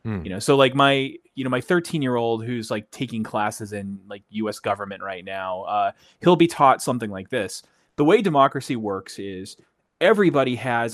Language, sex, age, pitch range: English, male, 30-49, 105-135 Hz